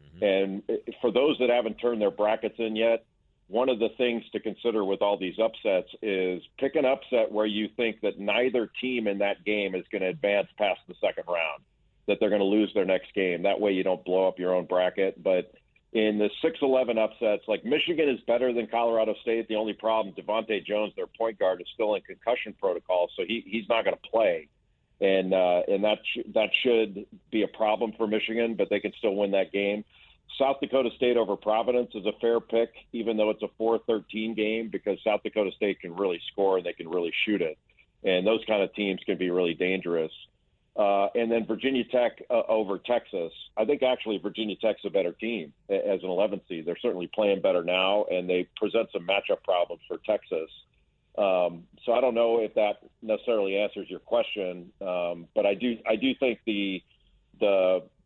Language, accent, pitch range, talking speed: English, American, 95-115 Hz, 205 wpm